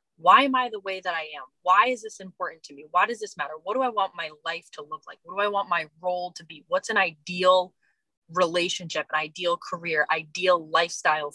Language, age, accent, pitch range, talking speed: English, 20-39, American, 170-225 Hz, 235 wpm